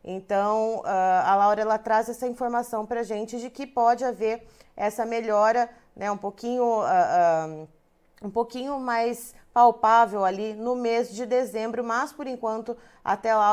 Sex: female